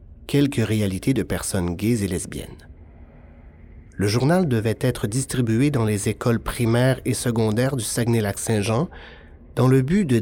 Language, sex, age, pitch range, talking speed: French, male, 30-49, 95-130 Hz, 140 wpm